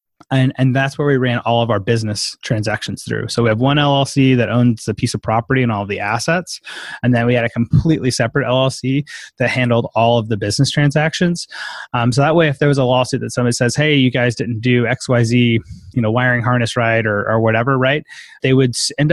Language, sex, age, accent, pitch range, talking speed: English, male, 20-39, American, 110-130 Hz, 225 wpm